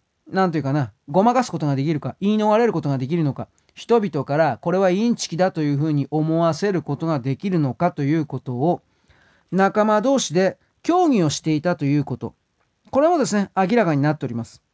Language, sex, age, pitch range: Japanese, male, 40-59, 145-215 Hz